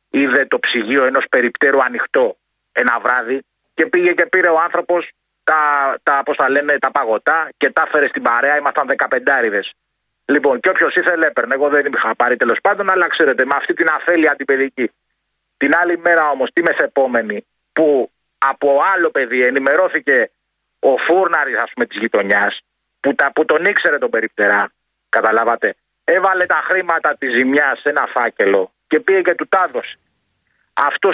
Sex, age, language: male, 30-49, Greek